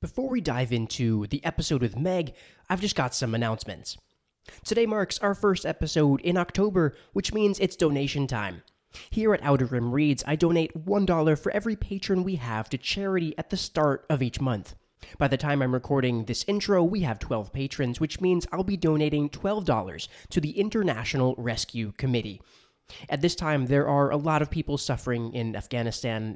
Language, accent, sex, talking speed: English, American, male, 180 wpm